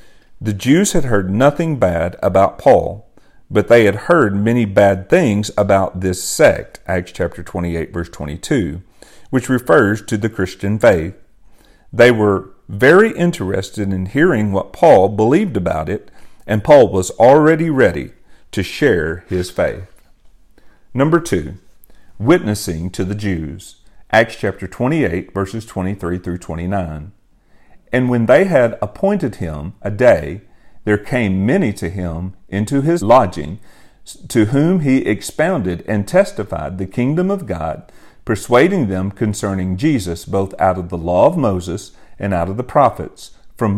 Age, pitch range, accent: 40-59, 95-120 Hz, American